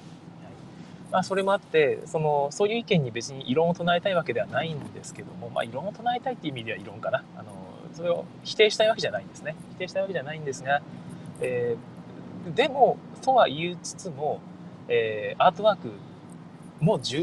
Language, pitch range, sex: Japanese, 135-195 Hz, male